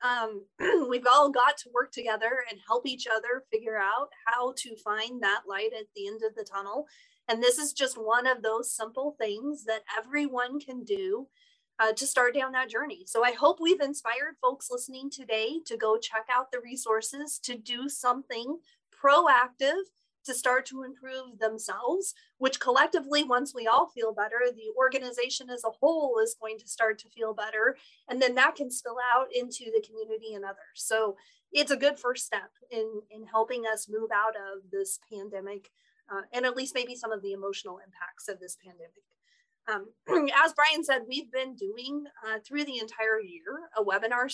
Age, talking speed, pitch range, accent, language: 30-49, 185 wpm, 220-290 Hz, American, English